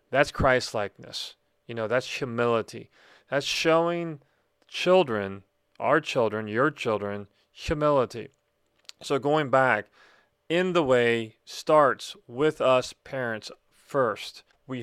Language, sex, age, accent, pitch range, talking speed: English, male, 40-59, American, 120-145 Hz, 105 wpm